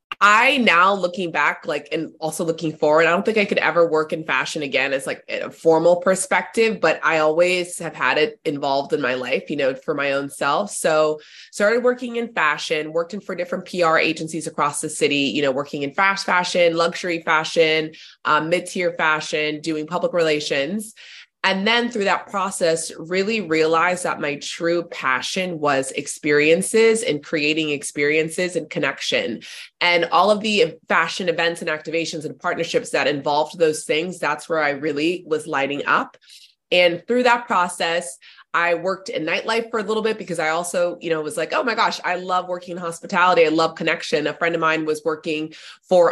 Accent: American